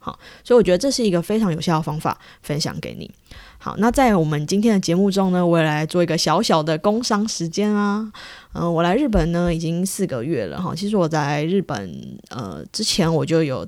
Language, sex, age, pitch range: Chinese, female, 20-39, 165-205 Hz